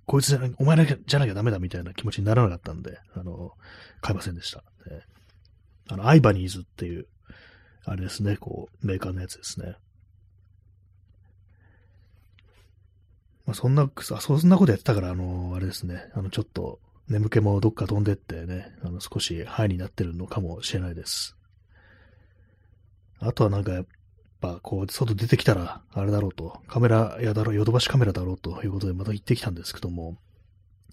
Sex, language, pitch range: male, Japanese, 95-115 Hz